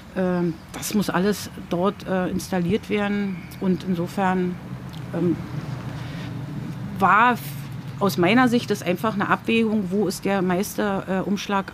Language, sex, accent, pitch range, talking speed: German, female, German, 175-210 Hz, 100 wpm